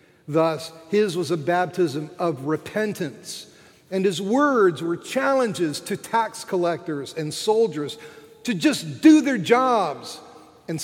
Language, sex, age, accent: English, male, 50-69, American